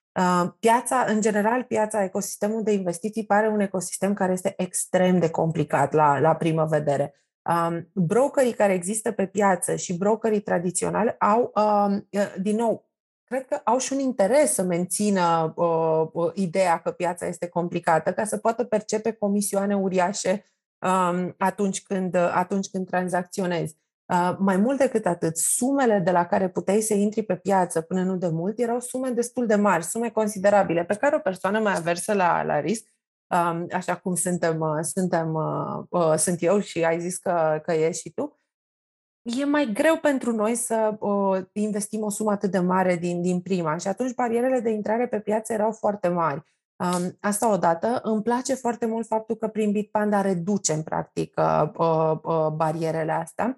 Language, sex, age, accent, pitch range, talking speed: Romanian, female, 30-49, native, 175-215 Hz, 165 wpm